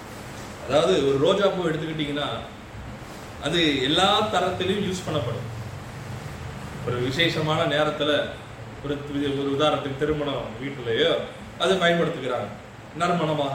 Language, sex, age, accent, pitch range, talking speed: Tamil, male, 30-49, native, 150-240 Hz, 85 wpm